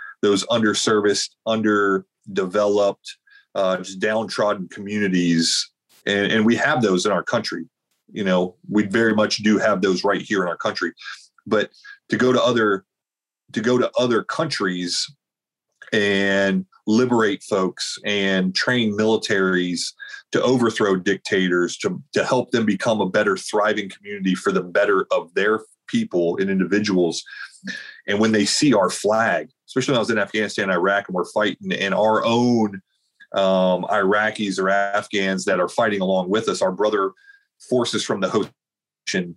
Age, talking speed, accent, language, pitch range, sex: 30-49, 150 wpm, American, English, 95-115 Hz, male